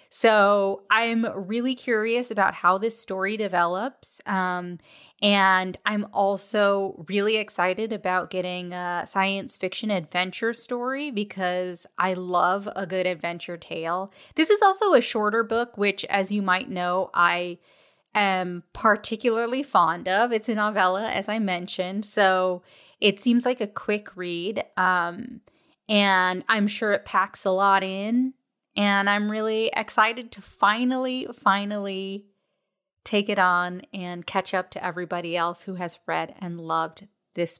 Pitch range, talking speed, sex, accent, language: 180-225 Hz, 140 wpm, female, American, English